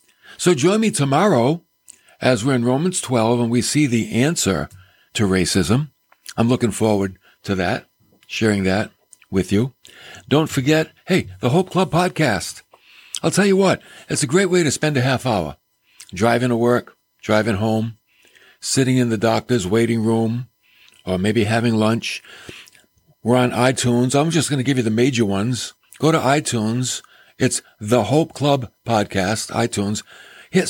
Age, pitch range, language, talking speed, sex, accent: 60-79, 105-135 Hz, English, 160 wpm, male, American